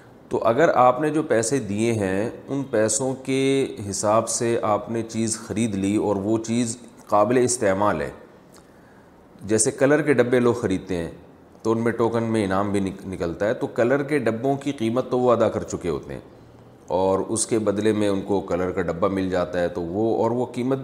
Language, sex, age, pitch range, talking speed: Urdu, male, 30-49, 100-130 Hz, 205 wpm